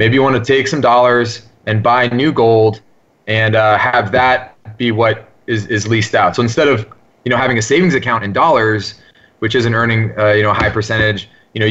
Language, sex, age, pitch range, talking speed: English, male, 30-49, 110-130 Hz, 220 wpm